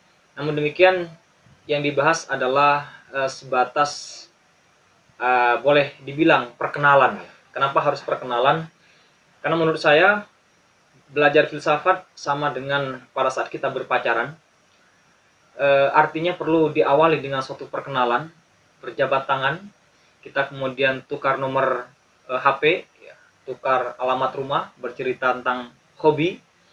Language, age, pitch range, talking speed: Indonesian, 20-39, 125-160 Hz, 105 wpm